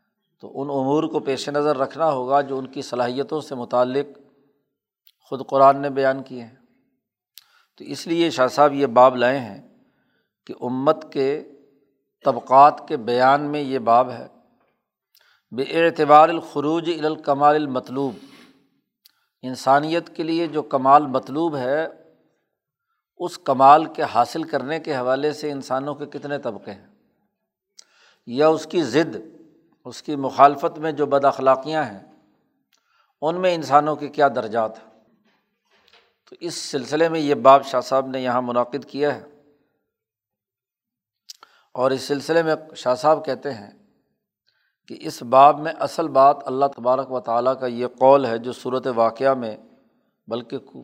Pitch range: 130-150 Hz